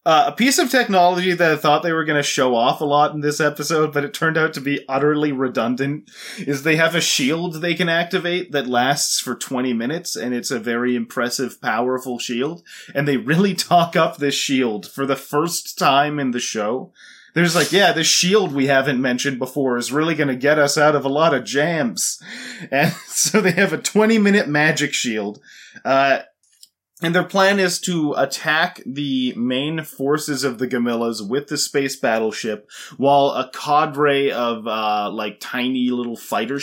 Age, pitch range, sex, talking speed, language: 30-49, 130-165 Hz, male, 190 wpm, English